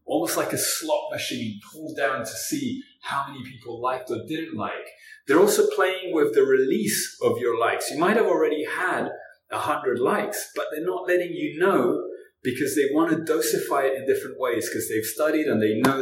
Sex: male